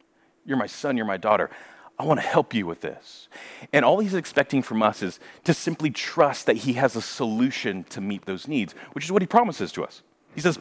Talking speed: 230 wpm